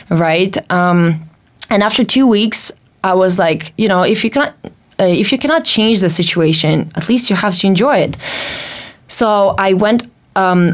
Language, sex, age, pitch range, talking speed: English, female, 20-39, 175-215 Hz, 180 wpm